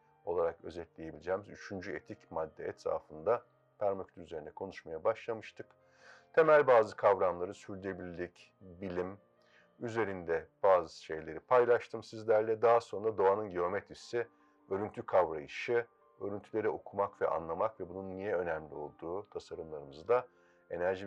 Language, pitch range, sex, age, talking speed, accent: Turkish, 105-155 Hz, male, 50-69, 105 wpm, native